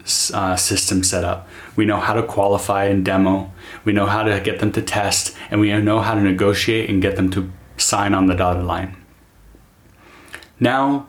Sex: male